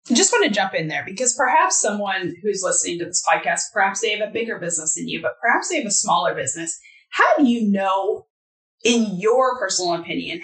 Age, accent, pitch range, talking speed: 20-39, American, 175-220 Hz, 220 wpm